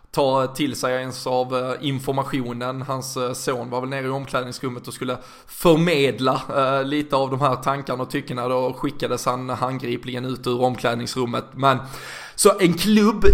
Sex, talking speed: male, 155 wpm